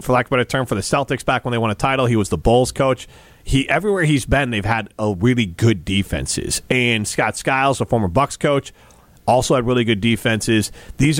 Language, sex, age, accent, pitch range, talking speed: English, male, 40-59, American, 105-135 Hz, 230 wpm